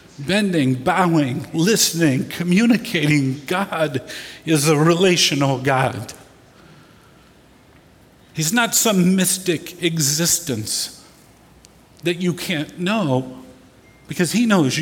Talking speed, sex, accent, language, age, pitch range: 85 wpm, male, American, English, 50-69, 145-185 Hz